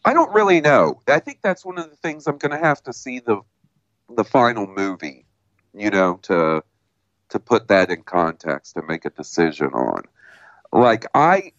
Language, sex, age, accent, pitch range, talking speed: English, male, 40-59, American, 95-125 Hz, 185 wpm